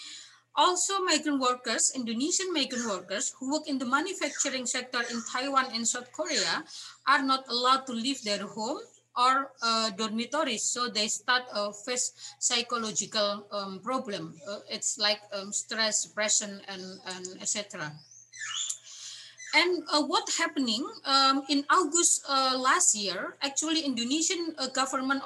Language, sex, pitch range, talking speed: English, female, 220-280 Hz, 140 wpm